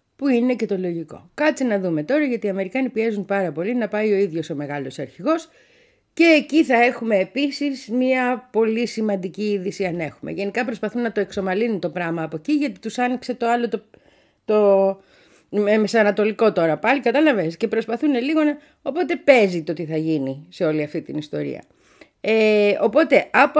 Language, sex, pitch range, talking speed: Greek, female, 175-255 Hz, 180 wpm